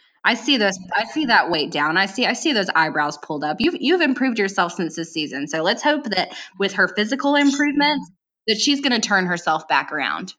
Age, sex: 10-29, female